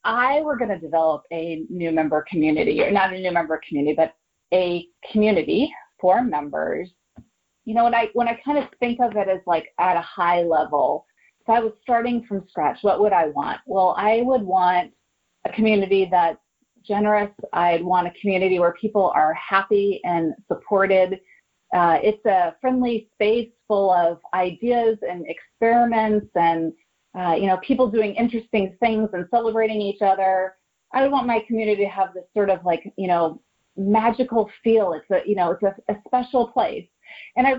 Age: 30-49